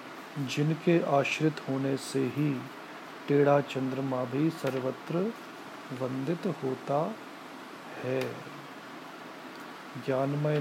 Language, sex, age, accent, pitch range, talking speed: Hindi, male, 40-59, native, 135-160 Hz, 75 wpm